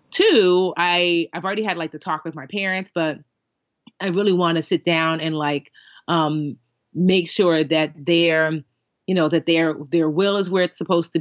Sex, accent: female, American